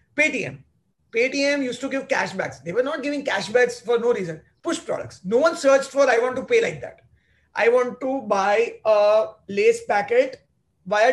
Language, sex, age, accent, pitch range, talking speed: English, male, 30-49, Indian, 195-285 Hz, 185 wpm